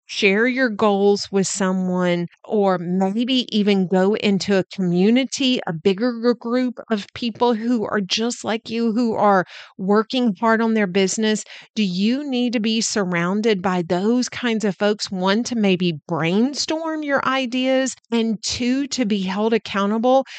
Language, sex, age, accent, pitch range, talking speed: English, female, 40-59, American, 185-245 Hz, 155 wpm